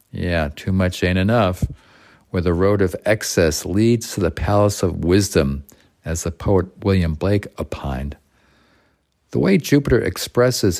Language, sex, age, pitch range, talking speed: English, male, 50-69, 80-105 Hz, 145 wpm